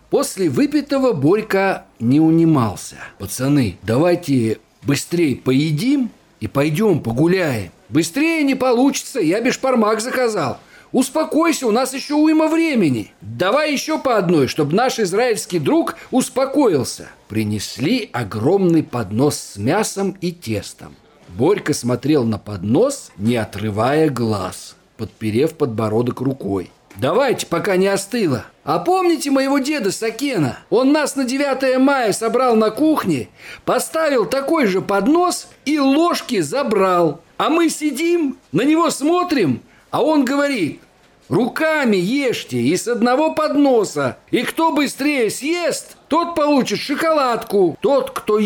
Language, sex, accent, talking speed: Russian, male, native, 120 wpm